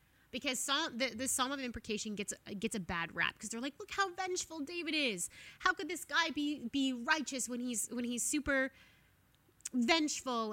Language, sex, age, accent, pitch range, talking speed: English, female, 20-39, American, 215-275 Hz, 180 wpm